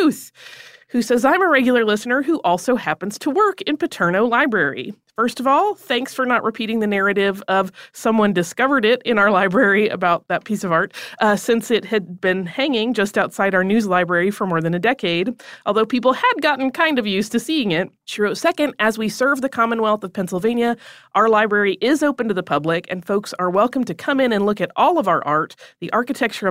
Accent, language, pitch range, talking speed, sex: American, English, 185-245 Hz, 215 wpm, female